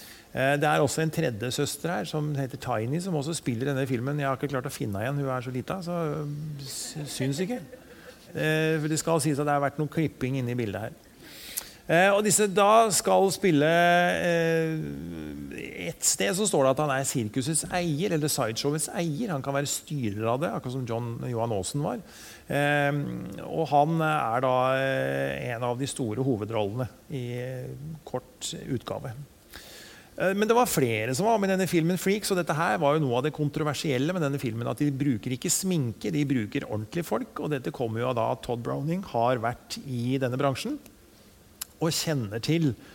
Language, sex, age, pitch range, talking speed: English, male, 30-49, 120-155 Hz, 190 wpm